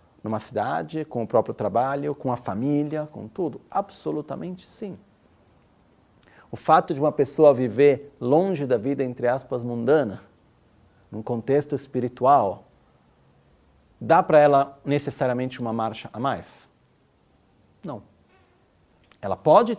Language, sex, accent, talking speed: Italian, male, Brazilian, 120 wpm